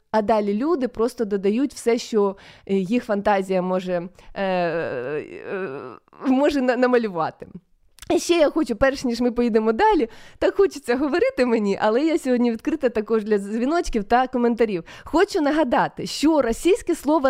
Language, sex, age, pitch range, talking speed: Ukrainian, female, 20-39, 215-300 Hz, 130 wpm